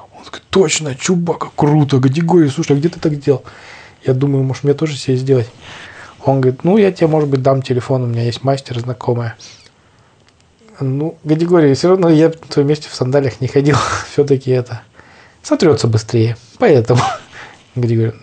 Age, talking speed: 20-39, 170 wpm